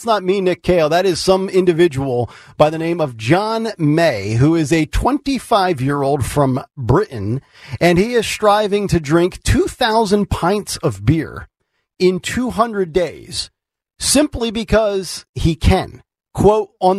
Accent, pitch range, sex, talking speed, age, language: American, 160-210 Hz, male, 150 wpm, 40-59, English